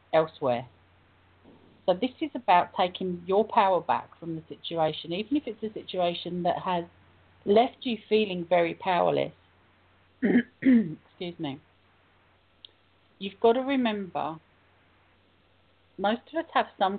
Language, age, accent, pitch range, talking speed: English, 40-59, British, 150-210 Hz, 125 wpm